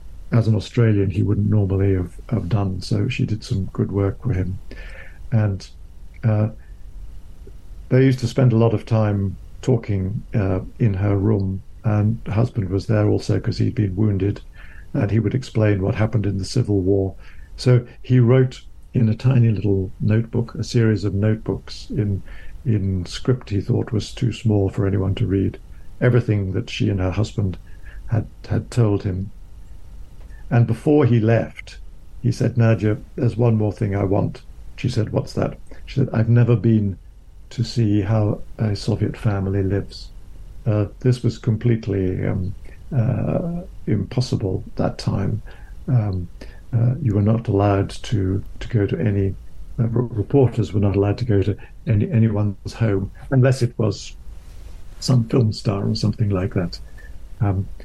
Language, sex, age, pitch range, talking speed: English, male, 60-79, 95-115 Hz, 165 wpm